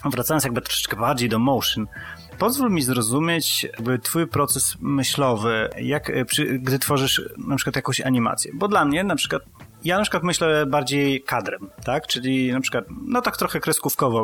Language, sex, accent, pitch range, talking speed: Polish, male, native, 115-140 Hz, 170 wpm